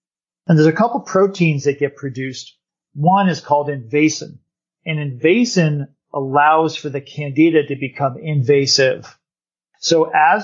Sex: male